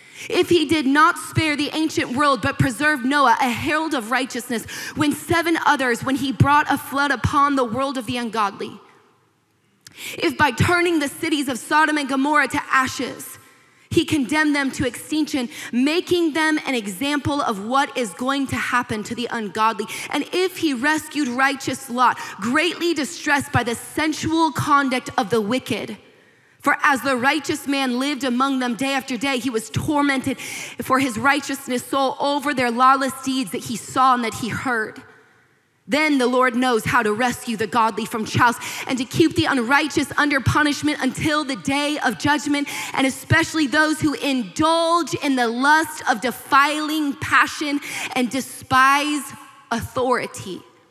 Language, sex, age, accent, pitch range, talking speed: English, female, 20-39, American, 250-300 Hz, 165 wpm